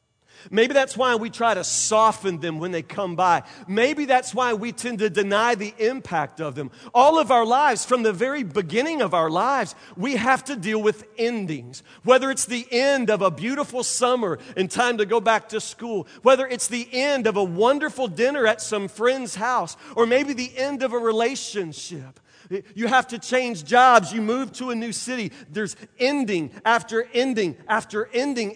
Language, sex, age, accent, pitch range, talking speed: English, male, 40-59, American, 195-255 Hz, 190 wpm